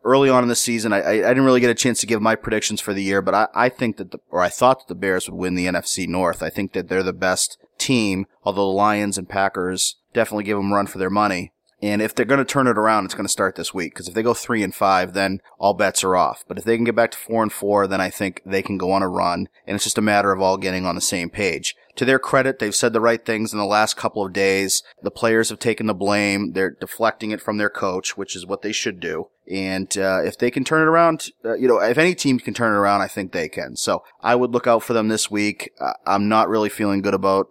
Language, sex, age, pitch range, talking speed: English, male, 30-49, 95-115 Hz, 290 wpm